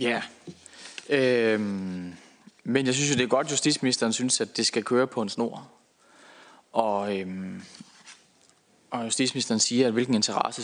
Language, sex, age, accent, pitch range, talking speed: Danish, male, 20-39, native, 105-130 Hz, 160 wpm